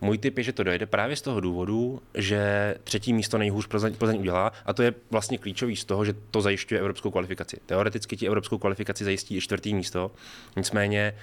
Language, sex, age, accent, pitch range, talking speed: Czech, male, 20-39, native, 100-120 Hz, 205 wpm